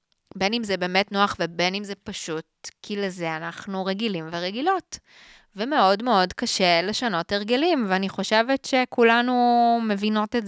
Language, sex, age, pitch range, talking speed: Hebrew, female, 20-39, 170-215 Hz, 135 wpm